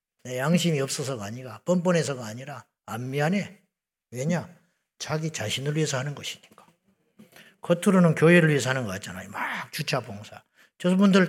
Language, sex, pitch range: Korean, male, 155-205 Hz